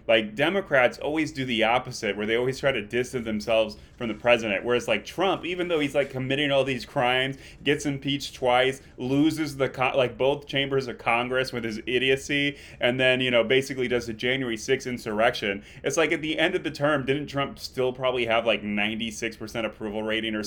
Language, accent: English, American